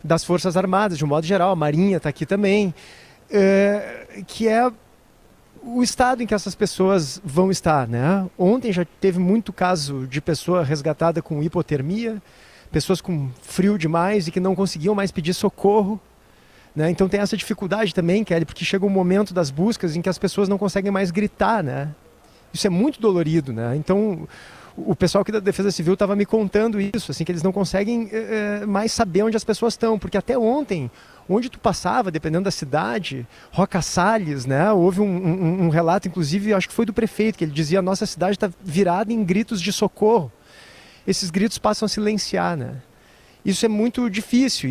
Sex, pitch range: male, 175-215 Hz